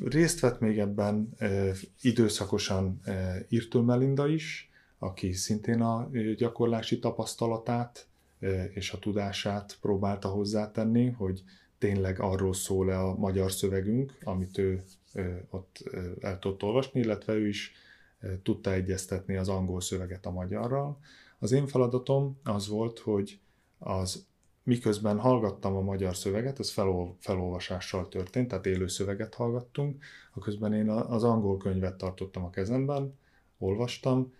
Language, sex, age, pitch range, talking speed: Hungarian, male, 30-49, 95-120 Hz, 125 wpm